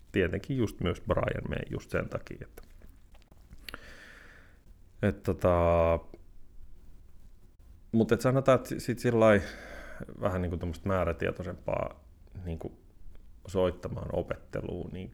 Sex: male